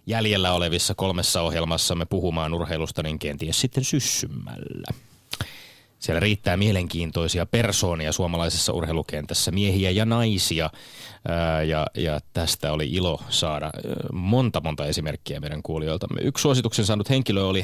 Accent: native